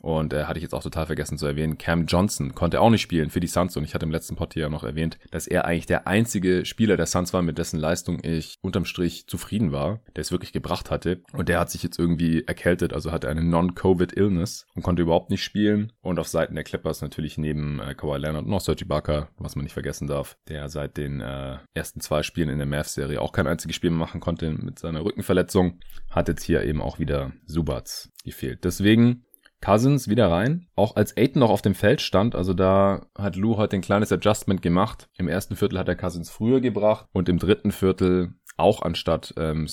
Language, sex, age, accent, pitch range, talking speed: German, male, 30-49, German, 80-95 Hz, 225 wpm